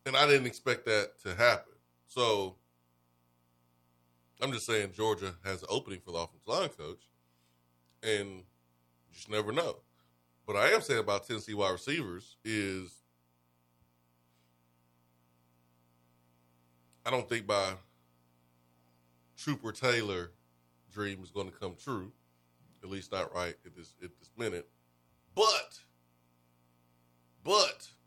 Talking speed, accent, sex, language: 120 wpm, American, male, English